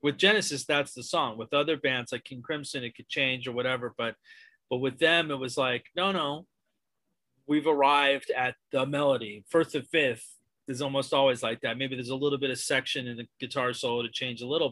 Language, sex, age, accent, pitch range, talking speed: English, male, 30-49, American, 125-155 Hz, 215 wpm